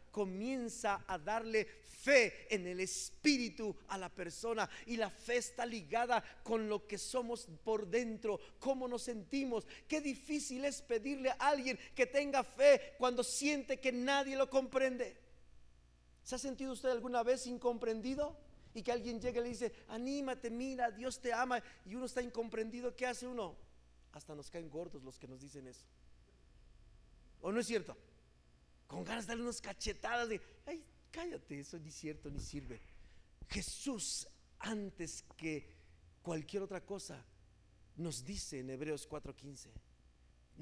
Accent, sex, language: Mexican, male, Spanish